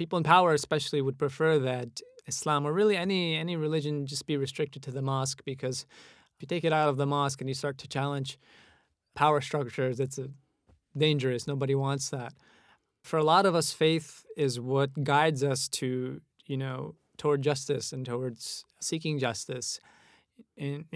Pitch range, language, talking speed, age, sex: 130-150 Hz, English, 175 wpm, 20-39, male